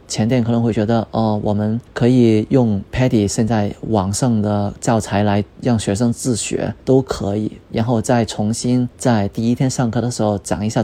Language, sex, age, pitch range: Chinese, male, 20-39, 105-120 Hz